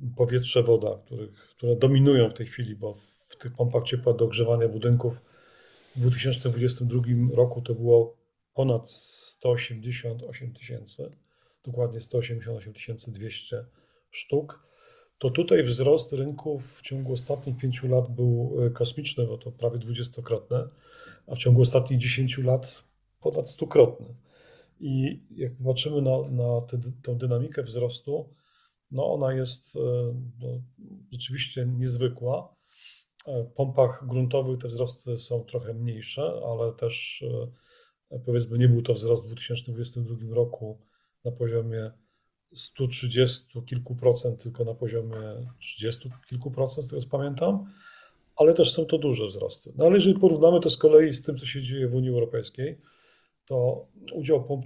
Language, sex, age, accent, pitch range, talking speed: Polish, male, 40-59, native, 120-135 Hz, 135 wpm